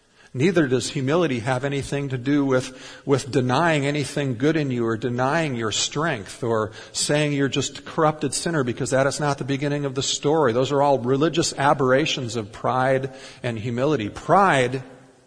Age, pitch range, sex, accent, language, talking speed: 50-69, 120-145 Hz, male, American, English, 175 wpm